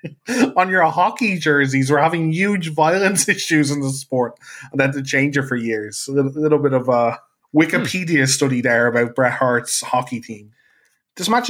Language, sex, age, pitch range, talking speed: English, male, 20-39, 125-155 Hz, 175 wpm